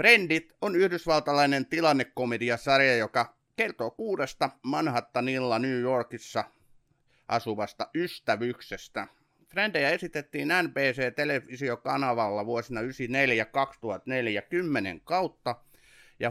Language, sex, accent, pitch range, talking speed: Finnish, male, native, 110-145 Hz, 70 wpm